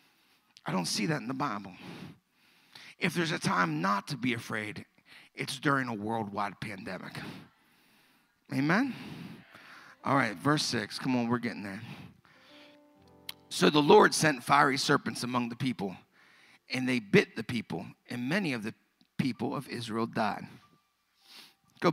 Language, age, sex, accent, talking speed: English, 50-69, male, American, 145 wpm